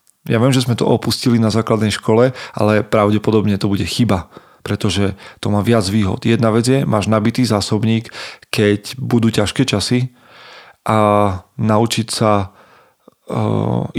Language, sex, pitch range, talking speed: Slovak, male, 105-125 Hz, 140 wpm